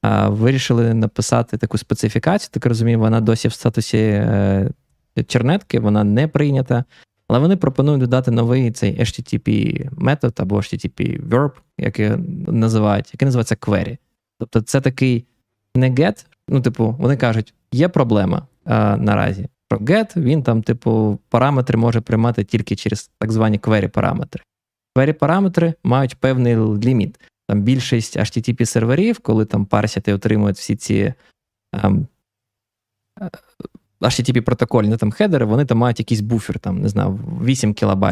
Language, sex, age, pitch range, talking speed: Ukrainian, male, 20-39, 105-130 Hz, 125 wpm